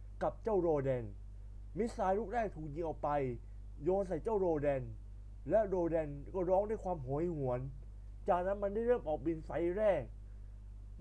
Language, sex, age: Thai, male, 20-39